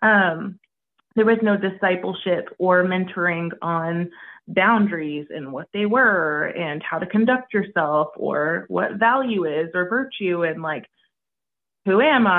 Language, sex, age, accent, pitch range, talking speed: English, female, 20-39, American, 180-225 Hz, 135 wpm